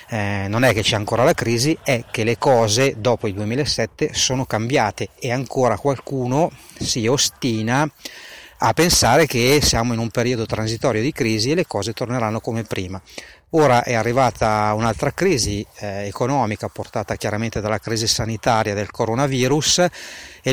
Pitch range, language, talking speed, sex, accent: 115-145 Hz, Italian, 150 wpm, male, native